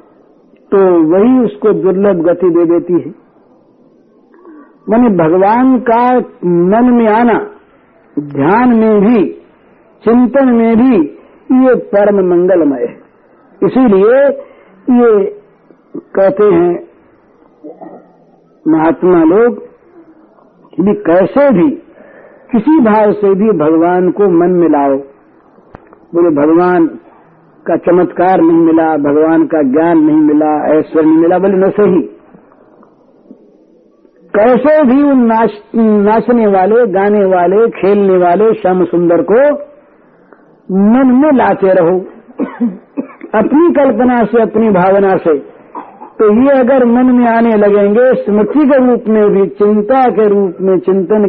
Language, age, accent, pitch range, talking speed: Hindi, 60-79, native, 180-255 Hz, 115 wpm